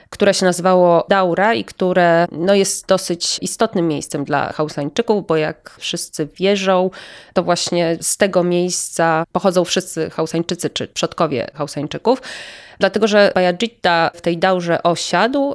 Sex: female